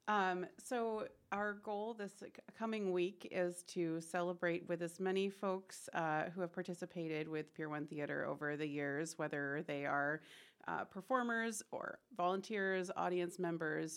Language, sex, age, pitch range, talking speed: English, female, 30-49, 170-210 Hz, 145 wpm